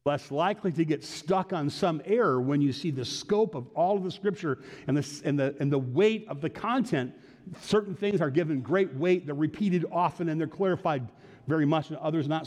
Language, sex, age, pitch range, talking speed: English, male, 50-69, 150-235 Hz, 215 wpm